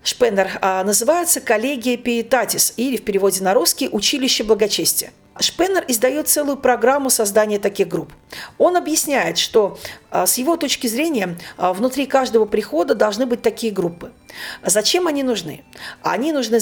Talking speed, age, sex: 135 wpm, 40-59, female